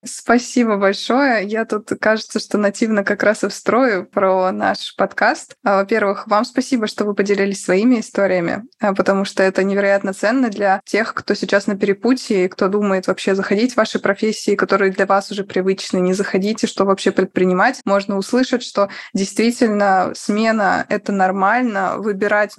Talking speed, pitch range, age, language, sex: 155 wpm, 200-225 Hz, 20-39, Russian, female